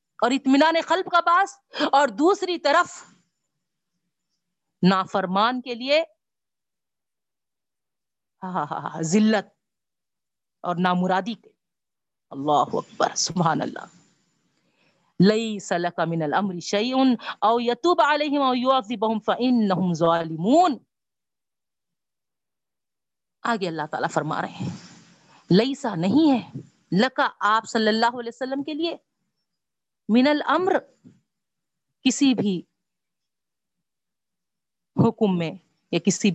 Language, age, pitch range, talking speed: Urdu, 50-69, 175-275 Hz, 75 wpm